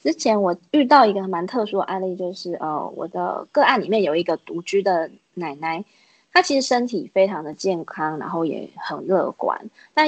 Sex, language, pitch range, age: female, Chinese, 175-275 Hz, 20-39